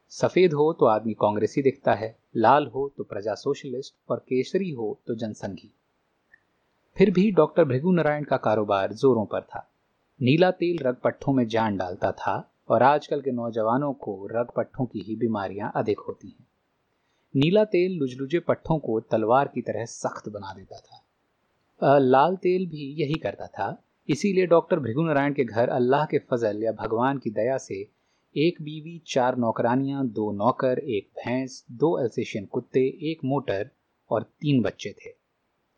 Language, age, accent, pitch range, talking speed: Hindi, 30-49, native, 110-155 Hz, 160 wpm